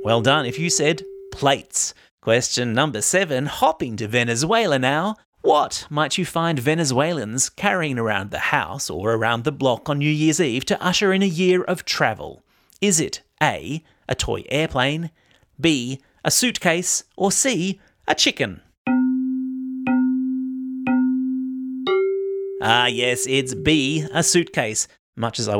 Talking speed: 140 wpm